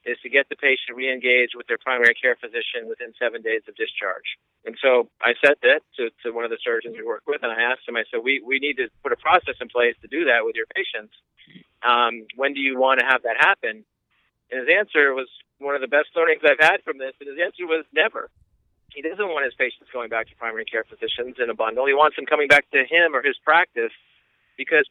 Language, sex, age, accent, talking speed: English, male, 50-69, American, 250 wpm